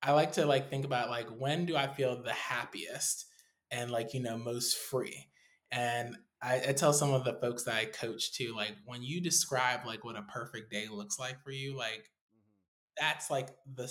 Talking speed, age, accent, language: 205 wpm, 20-39, American, English